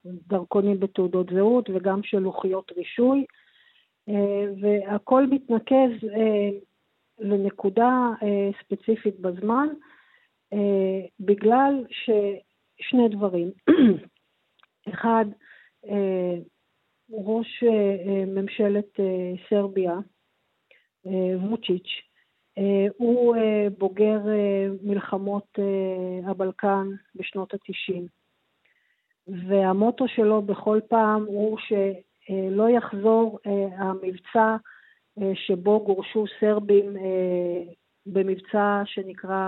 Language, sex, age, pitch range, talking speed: Hebrew, female, 50-69, 190-220 Hz, 60 wpm